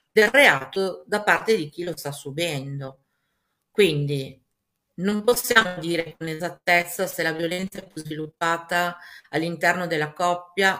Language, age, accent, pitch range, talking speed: Italian, 50-69, native, 160-195 Hz, 135 wpm